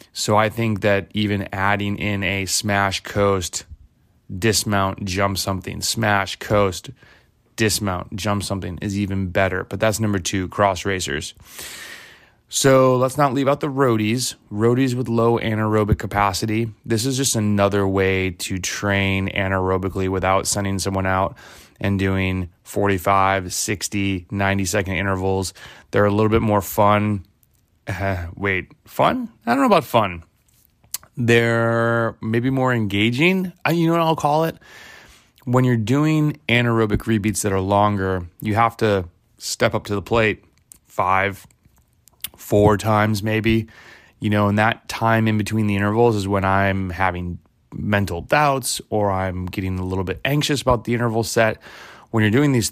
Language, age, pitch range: English, 20-39, 95-115 Hz